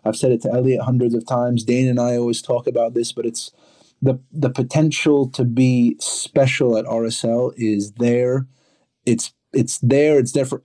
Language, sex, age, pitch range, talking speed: English, male, 30-49, 115-130 Hz, 185 wpm